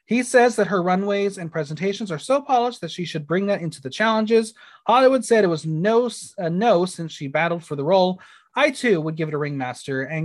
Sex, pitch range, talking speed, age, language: male, 160-220 Hz, 220 wpm, 30-49, English